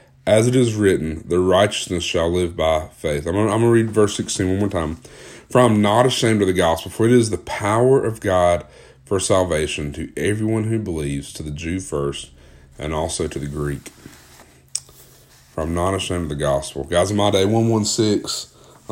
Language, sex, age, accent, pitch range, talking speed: English, male, 30-49, American, 80-110 Hz, 200 wpm